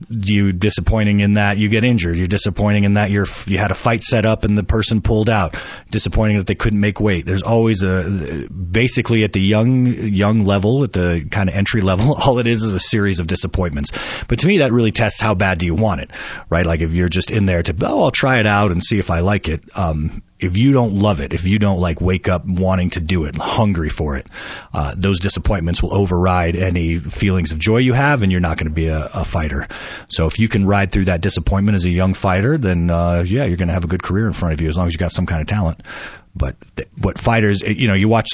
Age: 30-49